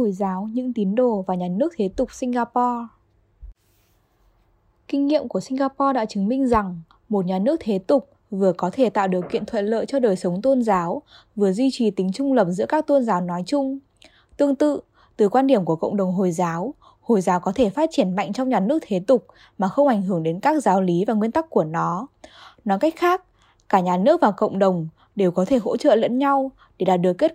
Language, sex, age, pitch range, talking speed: Vietnamese, female, 10-29, 185-275 Hz, 230 wpm